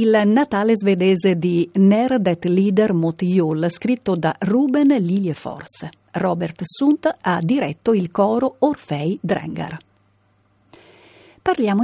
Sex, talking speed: female, 100 wpm